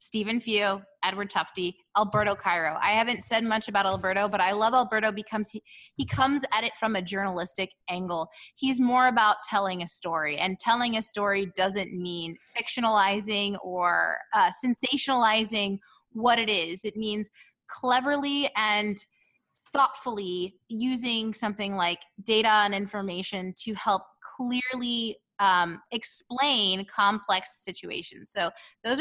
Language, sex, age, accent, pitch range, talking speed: English, female, 20-39, American, 195-240 Hz, 130 wpm